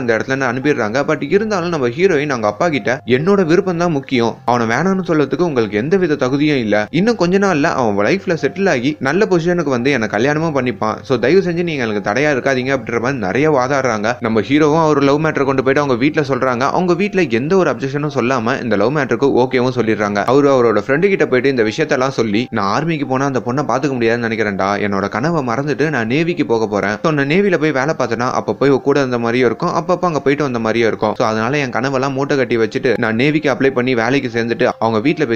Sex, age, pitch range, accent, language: male, 30-49, 115-150 Hz, native, Tamil